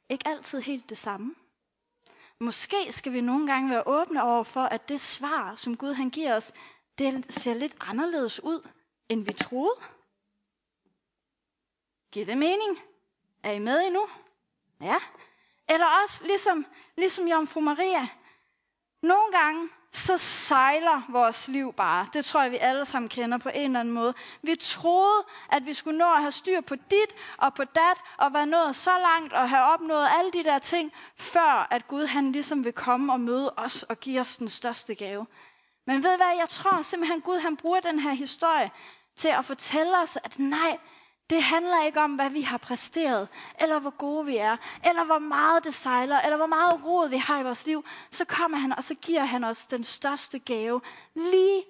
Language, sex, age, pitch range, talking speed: Danish, female, 30-49, 250-335 Hz, 190 wpm